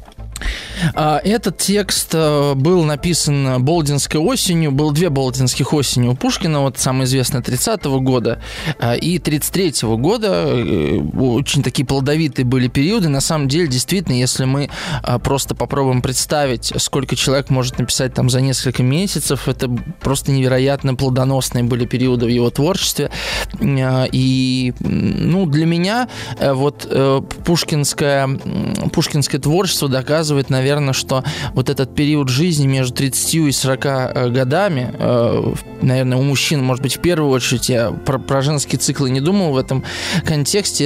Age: 20-39